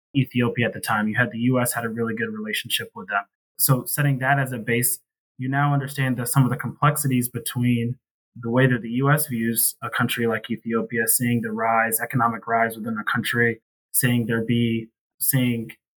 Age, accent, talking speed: 20-39, American, 195 wpm